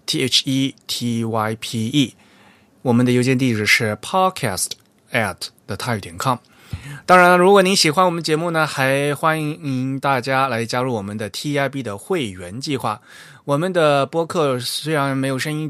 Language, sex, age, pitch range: Chinese, male, 20-39, 115-145 Hz